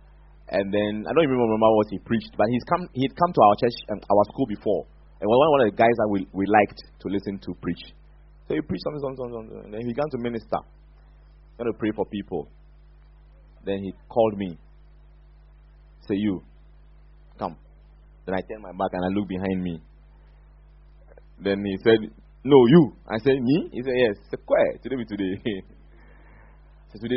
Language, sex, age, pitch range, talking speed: English, male, 30-49, 100-135 Hz, 185 wpm